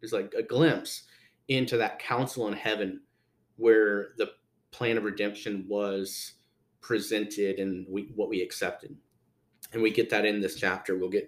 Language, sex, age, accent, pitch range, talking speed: English, male, 30-49, American, 100-130 Hz, 155 wpm